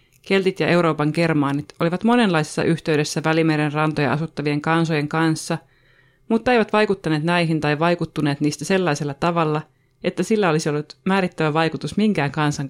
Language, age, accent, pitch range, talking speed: Finnish, 30-49, native, 150-175 Hz, 135 wpm